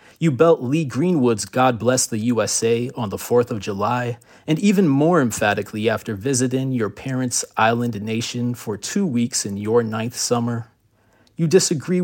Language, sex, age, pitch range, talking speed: English, male, 30-49, 110-150 Hz, 160 wpm